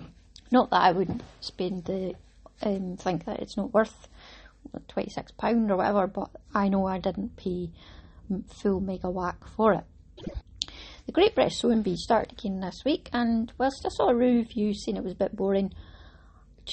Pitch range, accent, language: 185-235 Hz, British, English